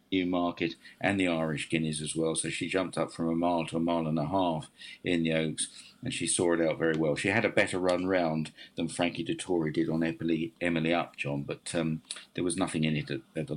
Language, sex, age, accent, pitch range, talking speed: English, male, 50-69, British, 80-100 Hz, 250 wpm